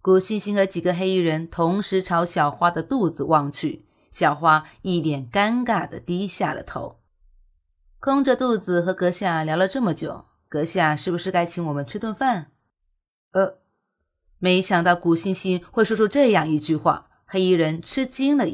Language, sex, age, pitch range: Chinese, female, 30-49, 155-200 Hz